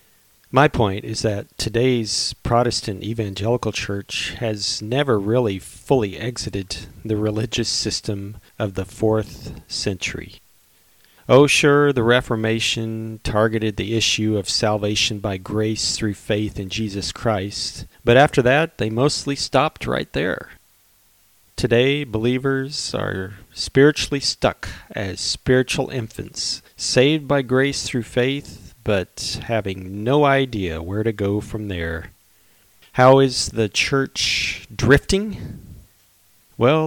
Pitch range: 100-130 Hz